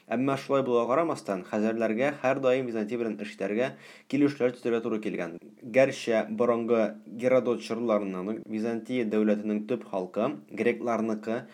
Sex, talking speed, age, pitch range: male, 125 wpm, 20-39, 105-130 Hz